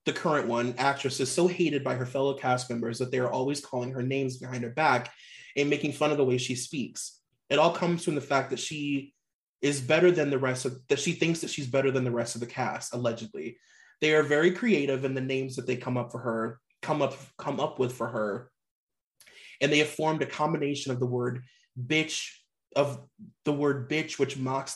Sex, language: male, English